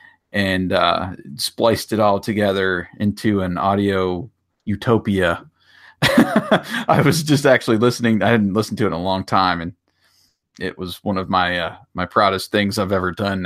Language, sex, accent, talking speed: English, male, American, 165 wpm